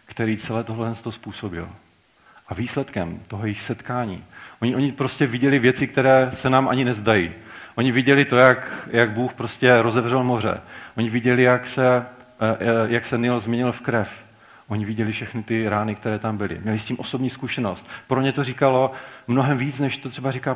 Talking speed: 185 wpm